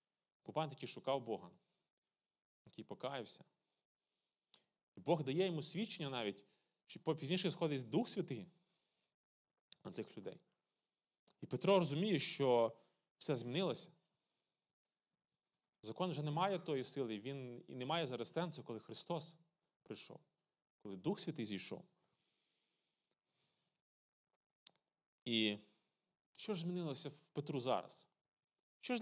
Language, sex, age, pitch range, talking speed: Ukrainian, male, 30-49, 140-190 Hz, 110 wpm